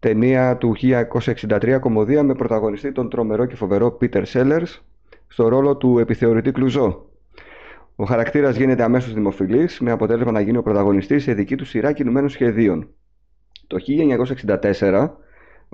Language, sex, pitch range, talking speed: Greek, male, 105-135 Hz, 135 wpm